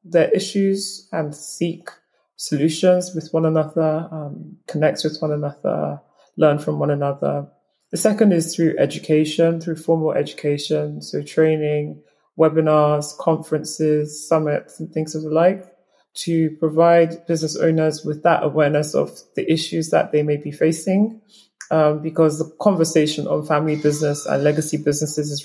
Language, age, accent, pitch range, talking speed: English, 20-39, British, 150-165 Hz, 145 wpm